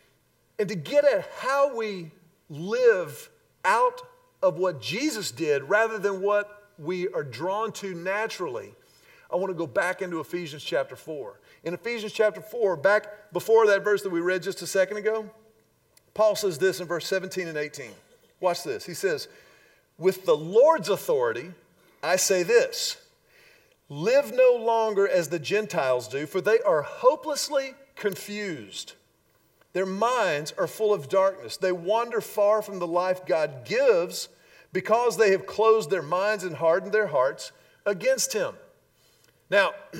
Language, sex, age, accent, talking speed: English, male, 50-69, American, 155 wpm